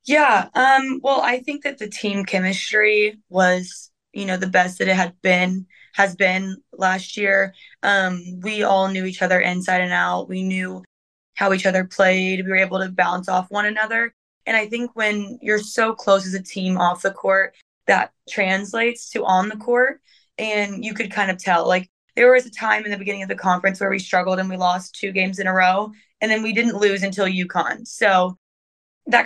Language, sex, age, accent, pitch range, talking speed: English, female, 20-39, American, 185-210 Hz, 205 wpm